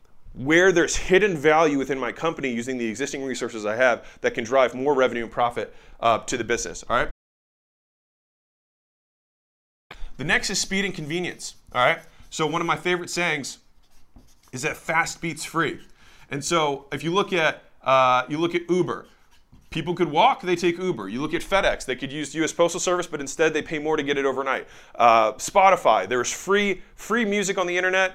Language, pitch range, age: English, 130-170 Hz, 20-39